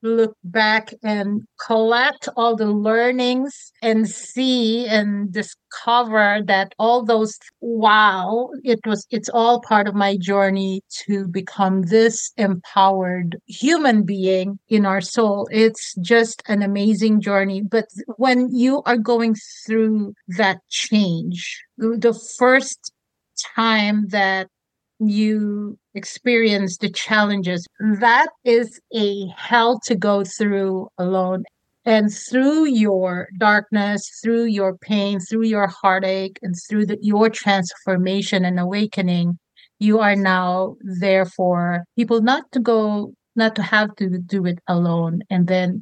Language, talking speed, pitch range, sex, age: English, 125 wpm, 190-230 Hz, female, 50-69